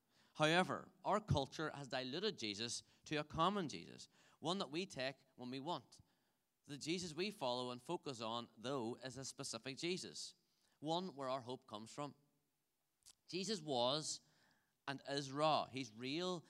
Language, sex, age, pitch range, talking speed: English, male, 30-49, 130-165 Hz, 155 wpm